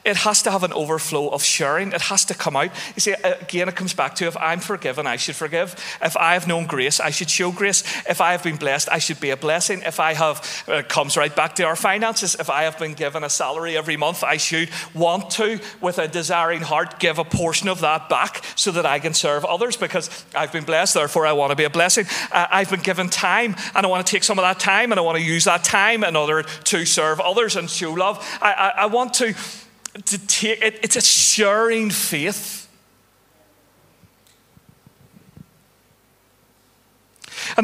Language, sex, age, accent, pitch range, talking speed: English, male, 40-59, British, 160-205 Hz, 215 wpm